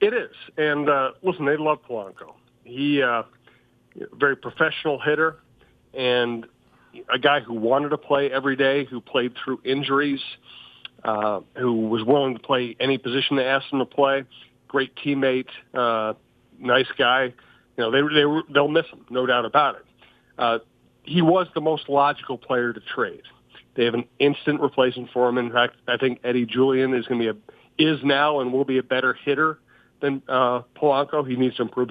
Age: 40-59